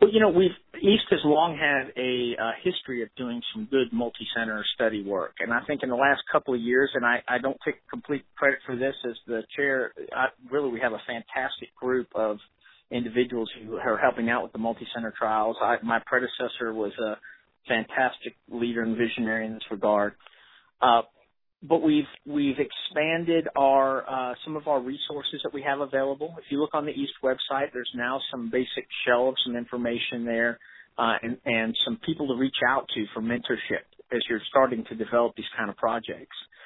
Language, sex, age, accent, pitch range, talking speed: English, male, 50-69, American, 115-145 Hz, 195 wpm